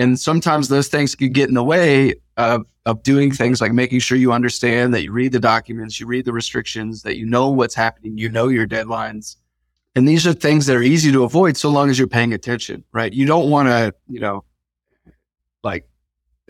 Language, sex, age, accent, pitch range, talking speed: English, male, 30-49, American, 110-130 Hz, 215 wpm